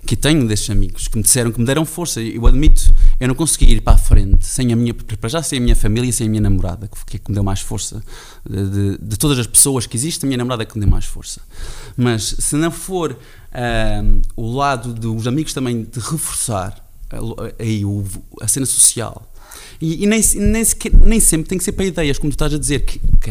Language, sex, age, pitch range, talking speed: Portuguese, male, 20-39, 105-140 Hz, 235 wpm